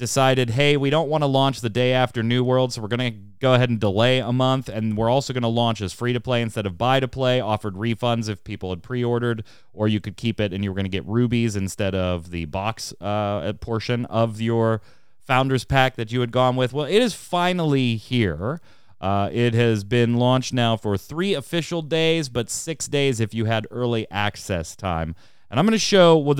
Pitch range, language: 110-140 Hz, English